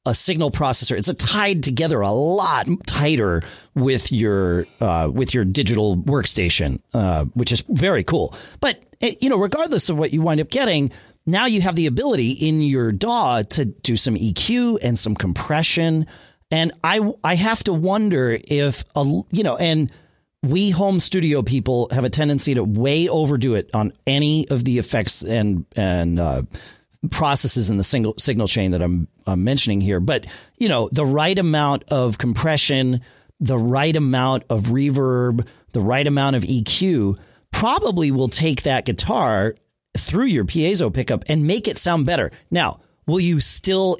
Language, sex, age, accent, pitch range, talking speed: English, male, 40-59, American, 110-165 Hz, 170 wpm